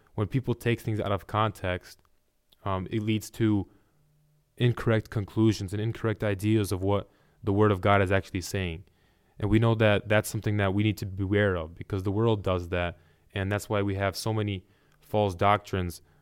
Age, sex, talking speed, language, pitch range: 20-39, male, 190 wpm, English, 100-115 Hz